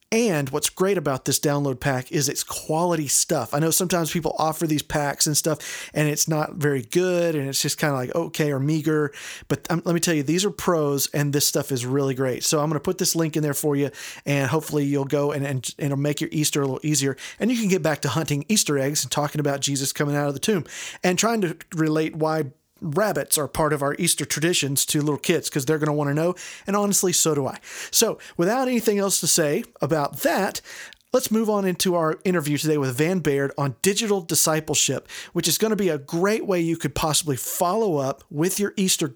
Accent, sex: American, male